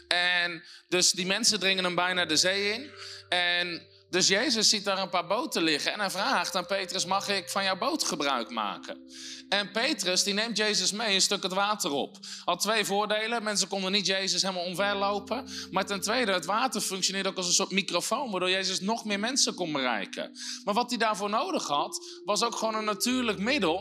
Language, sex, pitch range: Dutch, male, 175-220 Hz